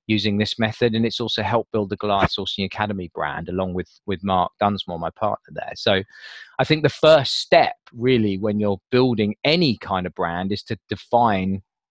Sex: male